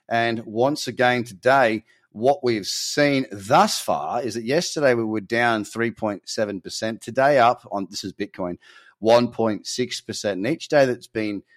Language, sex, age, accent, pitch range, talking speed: English, male, 30-49, Australian, 105-125 Hz, 145 wpm